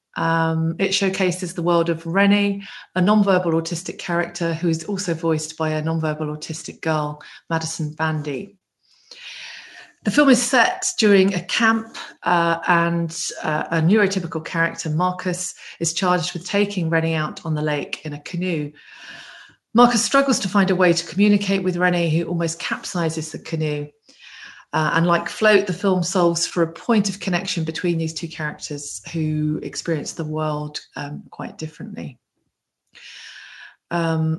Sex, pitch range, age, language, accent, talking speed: female, 160-185 Hz, 40-59, English, British, 150 wpm